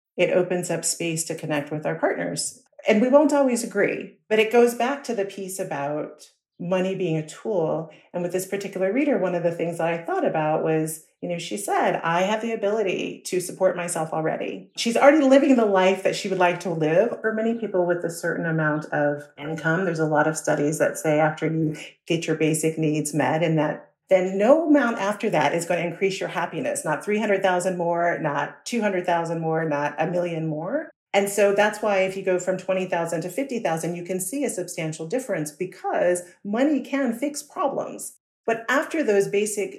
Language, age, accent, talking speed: English, 40-59, American, 205 wpm